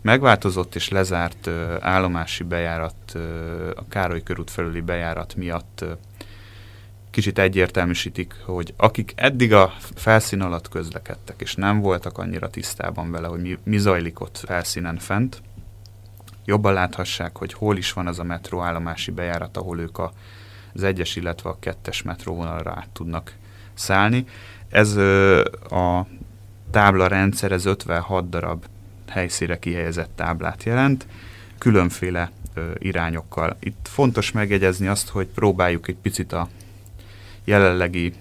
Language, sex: Hungarian, male